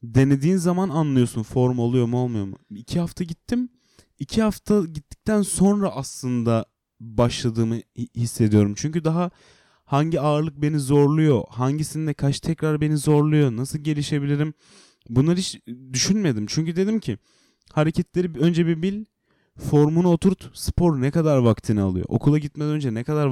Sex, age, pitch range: male, 30-49, 115-155 Hz